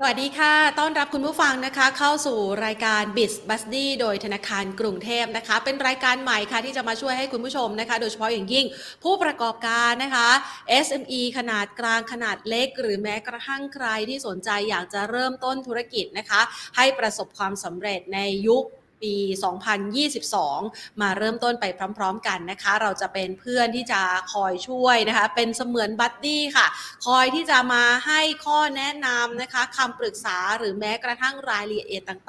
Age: 30-49